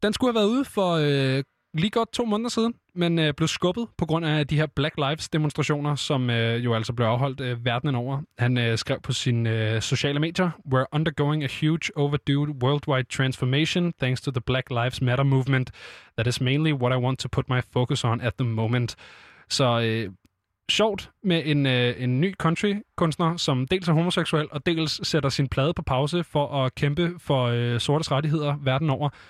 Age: 20-39